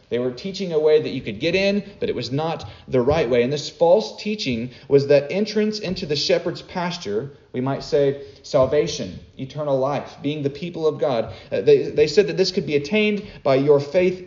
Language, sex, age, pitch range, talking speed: English, male, 40-59, 140-180 Hz, 215 wpm